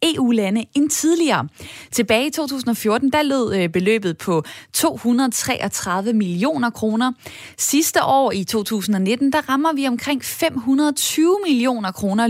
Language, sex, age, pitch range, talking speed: Danish, female, 20-39, 200-270 Hz, 115 wpm